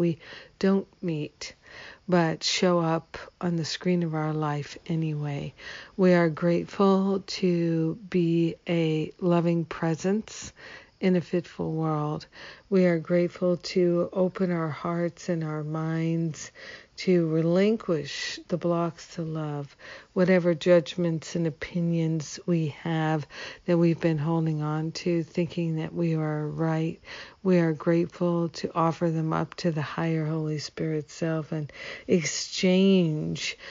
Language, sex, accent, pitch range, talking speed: English, female, American, 155-175 Hz, 130 wpm